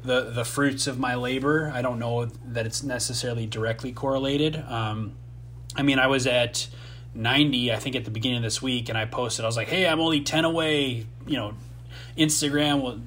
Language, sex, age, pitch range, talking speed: English, male, 20-39, 115-130 Hz, 200 wpm